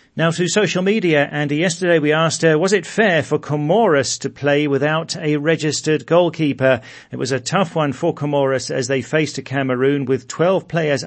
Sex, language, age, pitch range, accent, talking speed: male, English, 40-59, 130-155 Hz, British, 190 wpm